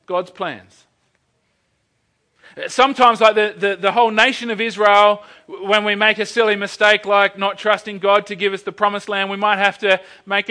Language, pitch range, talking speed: English, 180-215 Hz, 185 wpm